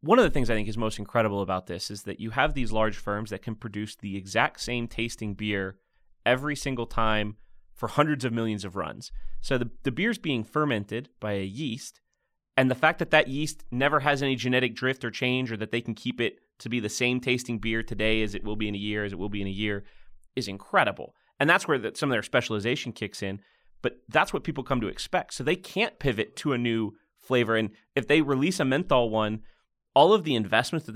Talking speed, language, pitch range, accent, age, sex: 235 wpm, English, 105-130 Hz, American, 30-49, male